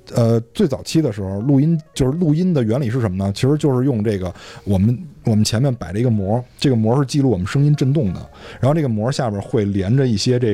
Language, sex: Chinese, male